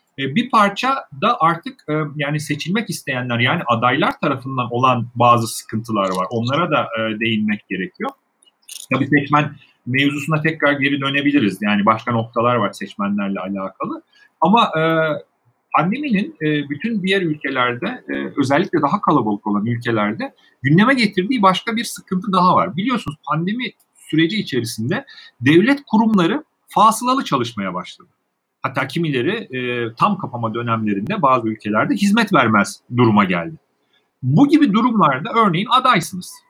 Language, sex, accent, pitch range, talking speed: Turkish, male, native, 125-205 Hz, 120 wpm